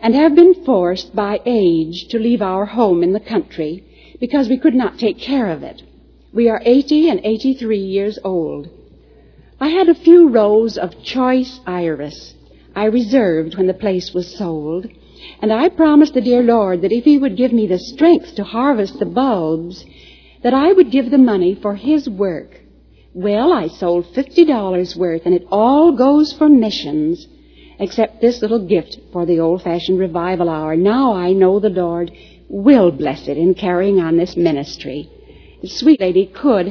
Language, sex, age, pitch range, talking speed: English, female, 60-79, 180-245 Hz, 175 wpm